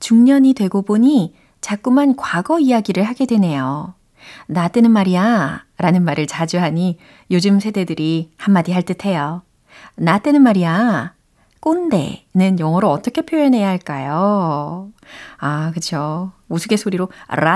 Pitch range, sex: 165-230 Hz, female